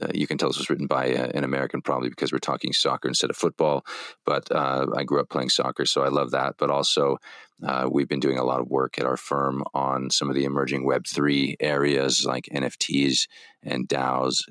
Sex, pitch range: male, 65-70 Hz